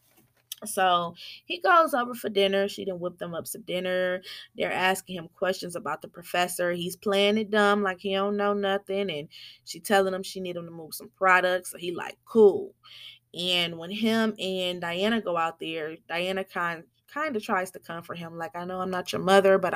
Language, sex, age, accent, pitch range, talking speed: English, female, 20-39, American, 175-210 Hz, 205 wpm